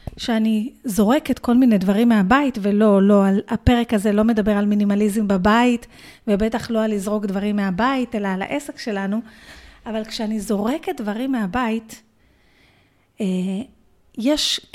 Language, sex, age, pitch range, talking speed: Hebrew, female, 30-49, 210-275 Hz, 125 wpm